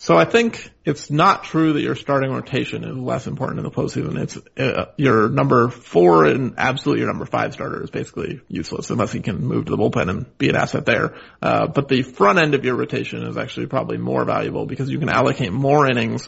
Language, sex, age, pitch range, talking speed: English, male, 30-49, 130-155 Hz, 225 wpm